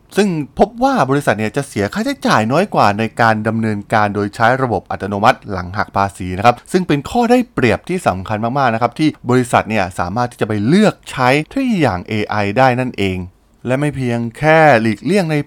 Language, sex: Thai, male